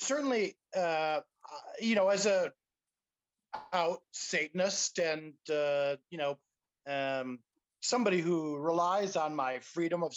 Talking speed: 110 wpm